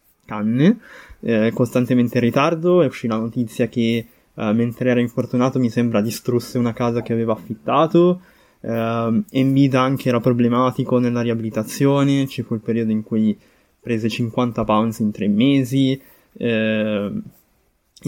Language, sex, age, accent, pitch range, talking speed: Italian, male, 20-39, native, 115-130 Hz, 140 wpm